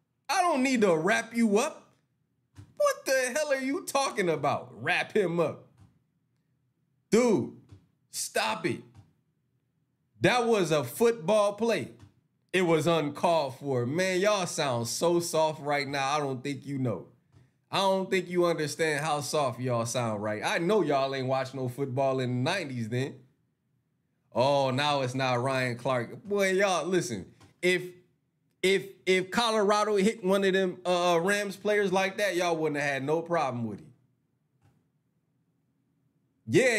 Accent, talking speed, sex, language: American, 150 wpm, male, English